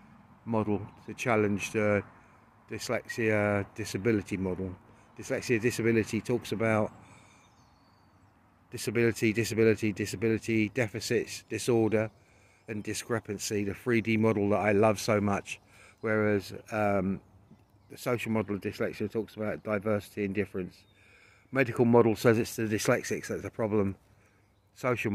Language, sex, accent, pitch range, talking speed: English, male, British, 100-120 Hz, 115 wpm